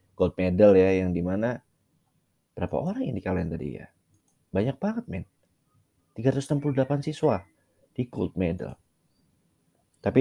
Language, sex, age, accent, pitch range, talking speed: Indonesian, male, 20-39, native, 90-110 Hz, 130 wpm